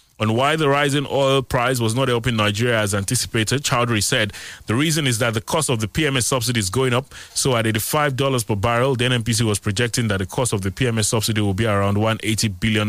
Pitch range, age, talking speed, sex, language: 105-130 Hz, 30-49, 230 wpm, male, English